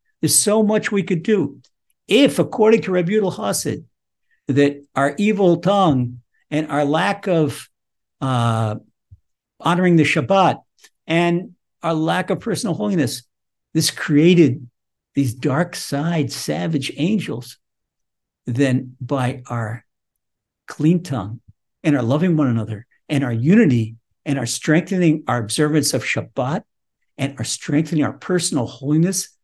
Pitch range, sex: 120-155 Hz, male